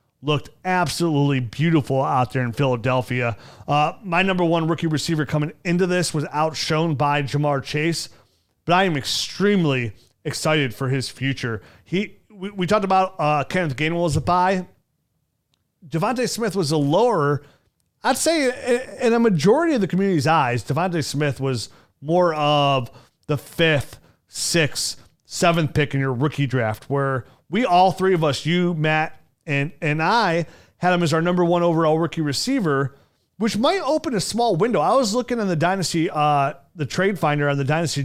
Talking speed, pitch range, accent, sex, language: 170 wpm, 135-175 Hz, American, male, English